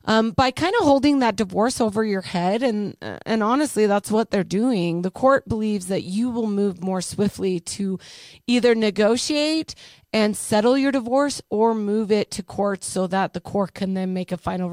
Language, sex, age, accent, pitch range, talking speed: English, female, 30-49, American, 185-245 Hz, 190 wpm